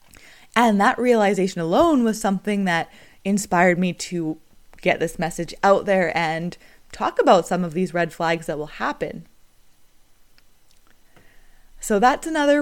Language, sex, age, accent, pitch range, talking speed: English, female, 20-39, American, 175-235 Hz, 140 wpm